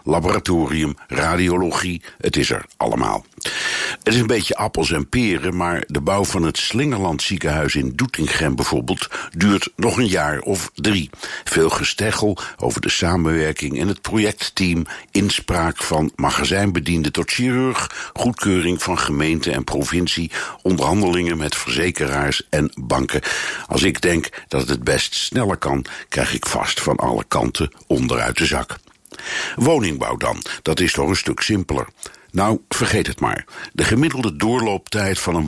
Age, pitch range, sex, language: 60-79, 80-105 Hz, male, Dutch